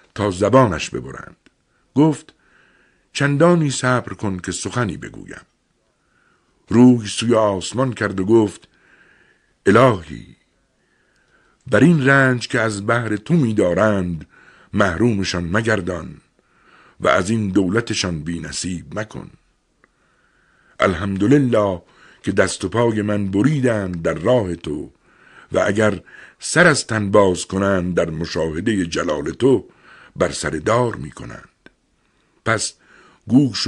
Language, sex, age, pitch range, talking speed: Persian, male, 60-79, 95-125 Hz, 110 wpm